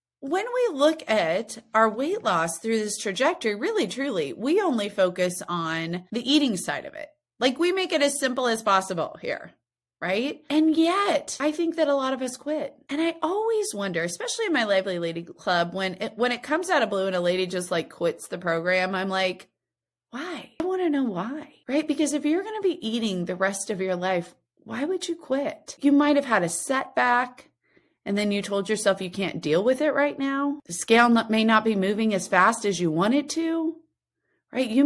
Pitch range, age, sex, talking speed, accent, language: 195-300 Hz, 30-49, female, 215 wpm, American, English